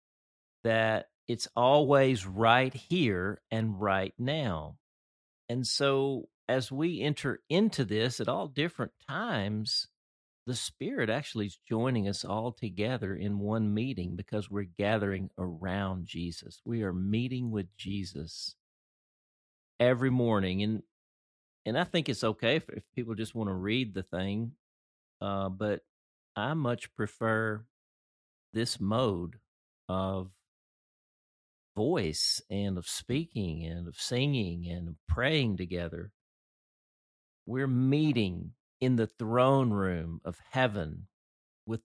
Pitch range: 90-125 Hz